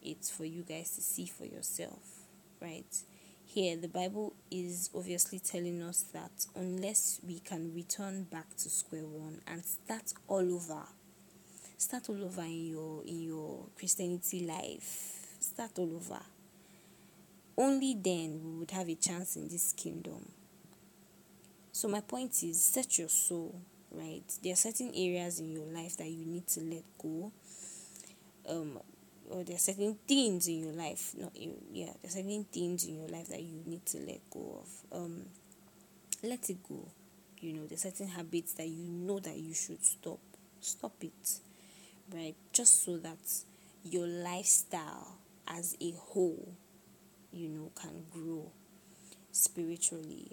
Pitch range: 170-195 Hz